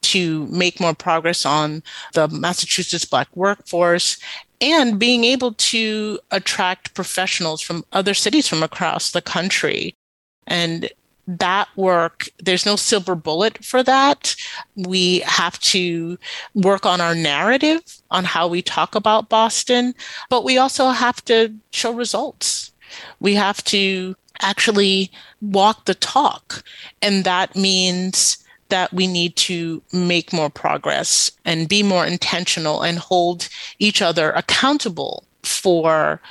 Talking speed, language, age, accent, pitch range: 130 wpm, English, 40-59, American, 170-210 Hz